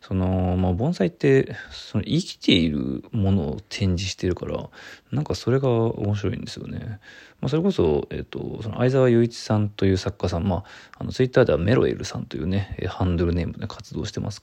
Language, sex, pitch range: Japanese, male, 95-120 Hz